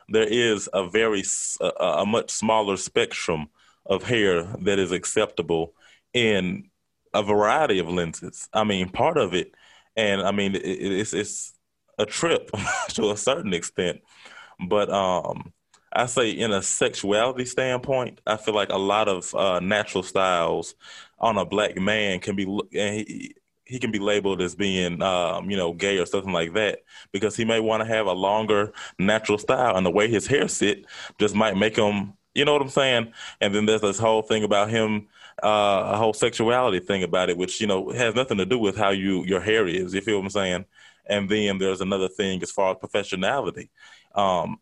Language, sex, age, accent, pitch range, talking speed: English, male, 20-39, American, 95-110 Hz, 190 wpm